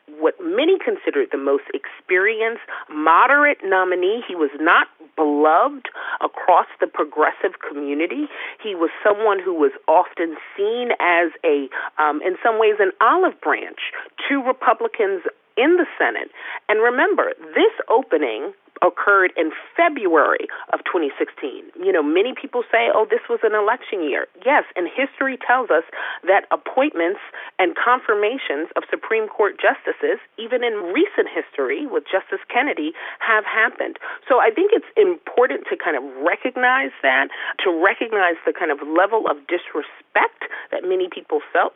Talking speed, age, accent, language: 145 wpm, 40-59, American, English